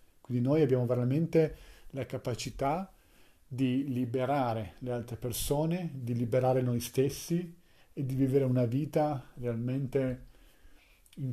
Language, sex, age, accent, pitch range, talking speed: Italian, male, 40-59, native, 115-140 Hz, 115 wpm